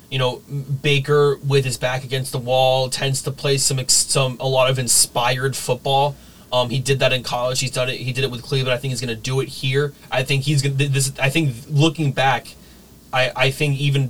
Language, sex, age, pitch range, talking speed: English, male, 30-49, 125-140 Hz, 230 wpm